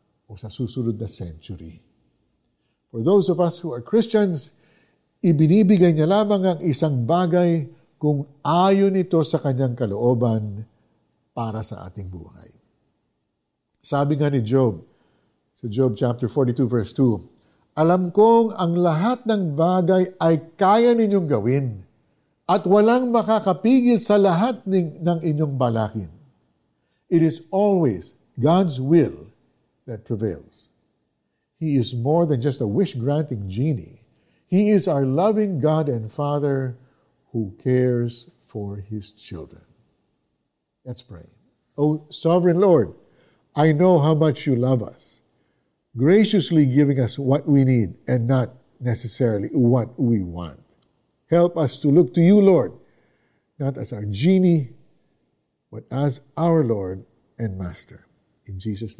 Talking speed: 130 wpm